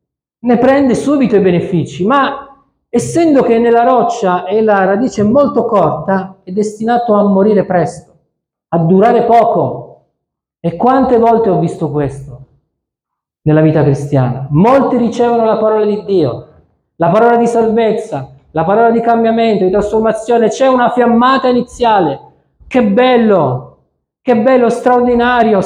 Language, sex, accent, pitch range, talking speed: Italian, male, native, 150-230 Hz, 135 wpm